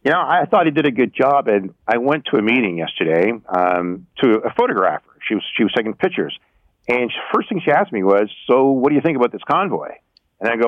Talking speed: 255 wpm